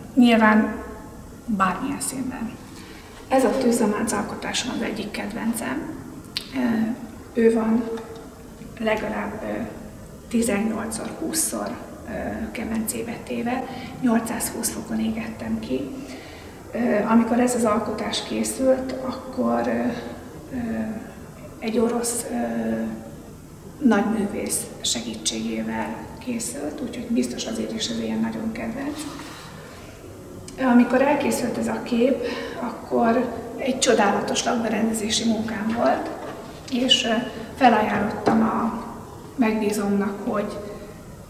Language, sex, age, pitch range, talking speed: Hungarian, female, 40-59, 215-245 Hz, 80 wpm